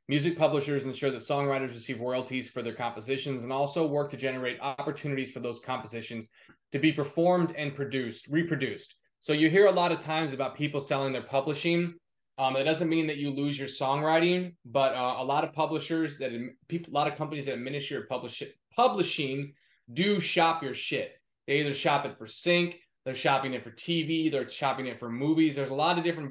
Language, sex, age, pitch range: English, male, 20-39, 130-155 Hz